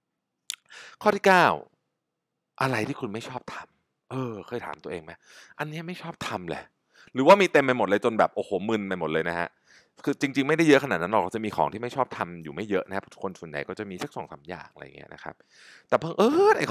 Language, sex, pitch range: Thai, male, 105-160 Hz